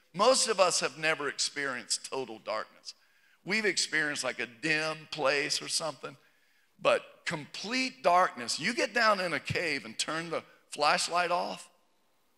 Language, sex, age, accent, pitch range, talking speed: English, male, 50-69, American, 155-200 Hz, 145 wpm